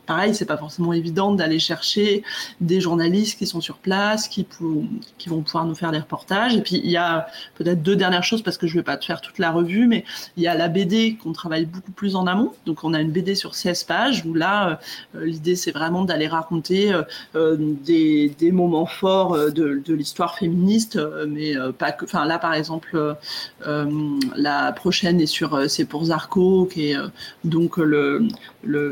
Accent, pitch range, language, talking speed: French, 160-195 Hz, French, 220 wpm